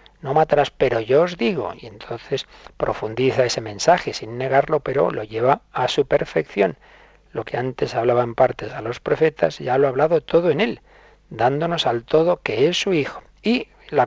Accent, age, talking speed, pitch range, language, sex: Spanish, 50-69, 190 wpm, 130-175 Hz, Spanish, male